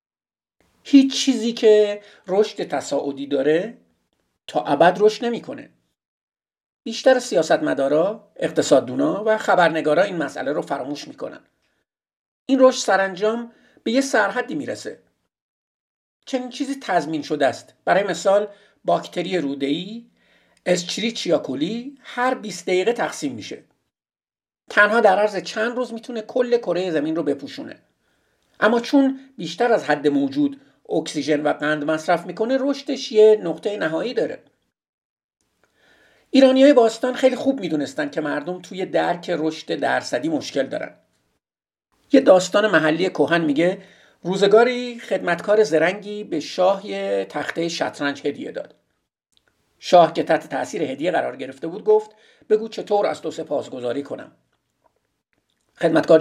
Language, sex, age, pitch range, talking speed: Persian, male, 50-69, 165-240 Hz, 125 wpm